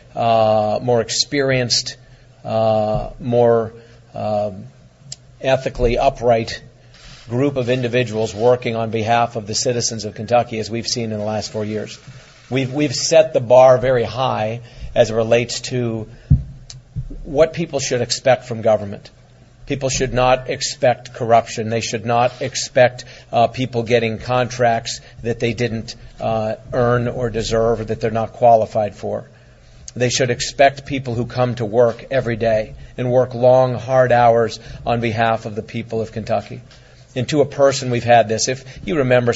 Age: 50-69